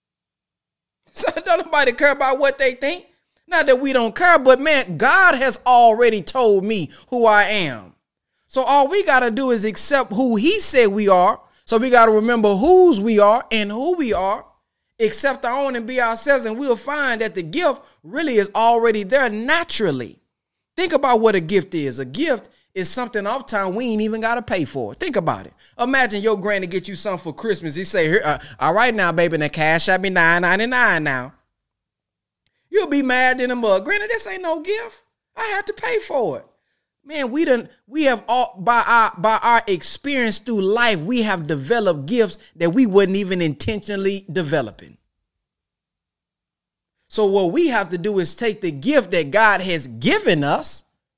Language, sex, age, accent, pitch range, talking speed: English, male, 20-39, American, 200-275 Hz, 195 wpm